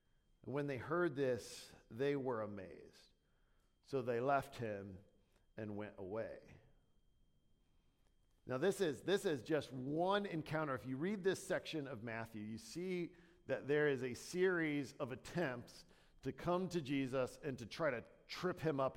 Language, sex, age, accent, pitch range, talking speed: English, male, 50-69, American, 130-175 Hz, 155 wpm